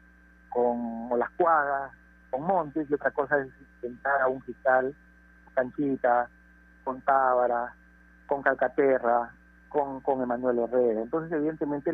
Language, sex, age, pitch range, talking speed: Spanish, male, 50-69, 115-155 Hz, 125 wpm